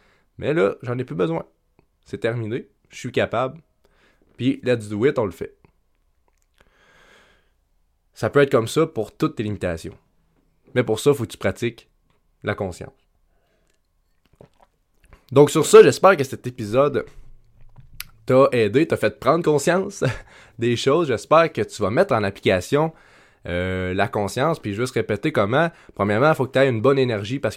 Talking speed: 165 wpm